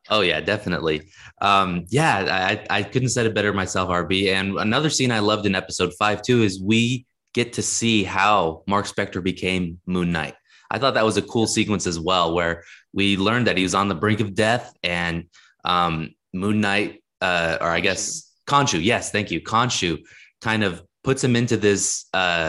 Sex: male